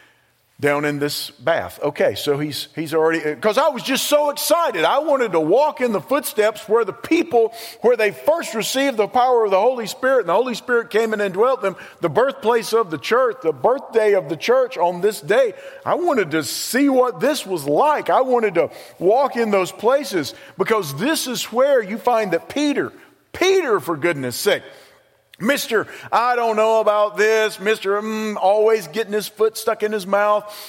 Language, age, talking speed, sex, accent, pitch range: English, 50-69, 195 wpm, male, American, 190-245 Hz